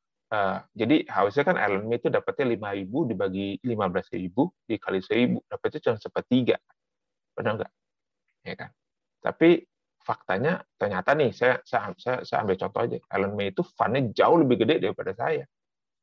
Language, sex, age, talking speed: Indonesian, male, 30-49, 145 wpm